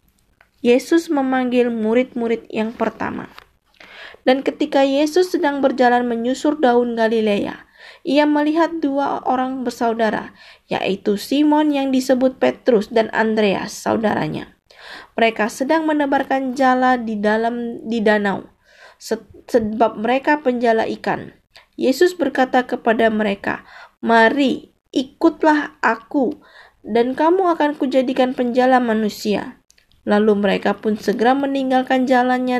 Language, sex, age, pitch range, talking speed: Indonesian, female, 20-39, 225-270 Hz, 105 wpm